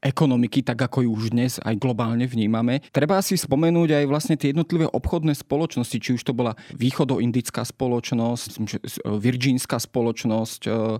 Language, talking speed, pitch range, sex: Slovak, 140 wpm, 120-145 Hz, male